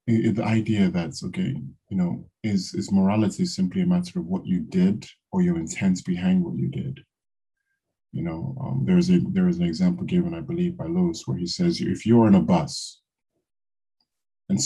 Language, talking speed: English, 190 wpm